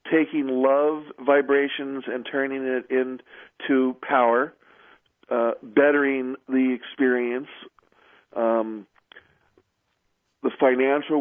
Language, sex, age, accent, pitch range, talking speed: English, male, 50-69, American, 125-145 Hz, 80 wpm